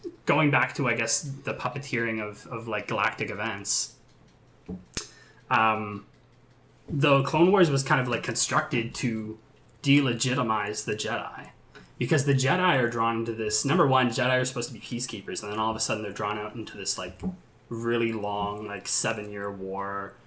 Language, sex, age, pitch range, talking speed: English, male, 20-39, 110-125 Hz, 170 wpm